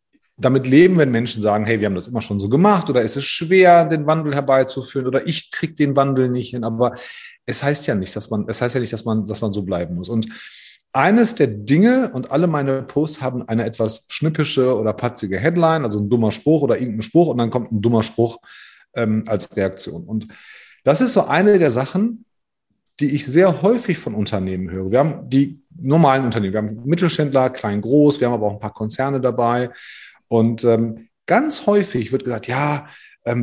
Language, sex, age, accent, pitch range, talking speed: German, male, 30-49, German, 115-160 Hz, 195 wpm